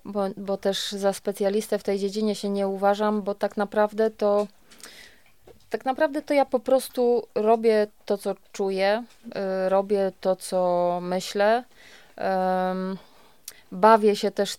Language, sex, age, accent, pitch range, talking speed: Polish, female, 20-39, native, 190-225 Hz, 140 wpm